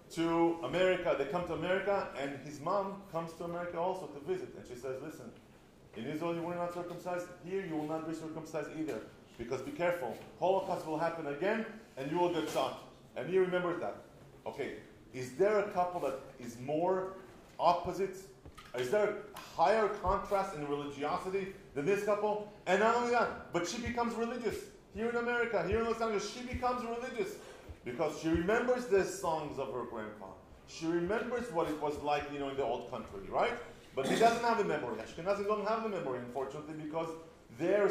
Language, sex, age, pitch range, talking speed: English, male, 40-59, 155-215 Hz, 190 wpm